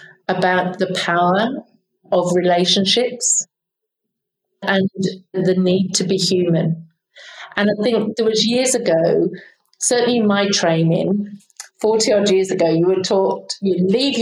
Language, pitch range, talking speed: English, 185-220 Hz, 125 wpm